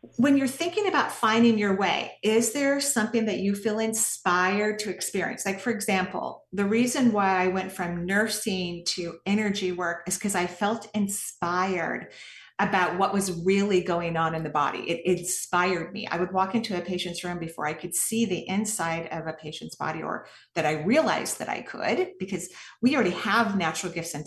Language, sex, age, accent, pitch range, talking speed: English, female, 40-59, American, 180-225 Hz, 195 wpm